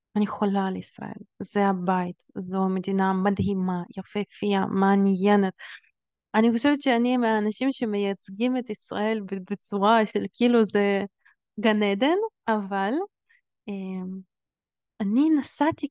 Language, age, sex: Hebrew, 20-39, female